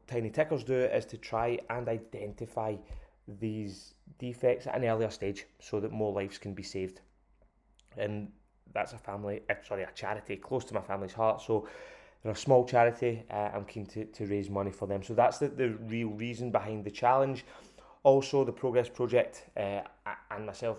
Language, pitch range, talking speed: English, 105-120 Hz, 185 wpm